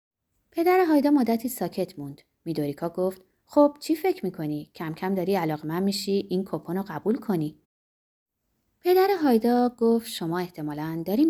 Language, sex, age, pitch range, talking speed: Persian, female, 20-39, 150-245 Hz, 145 wpm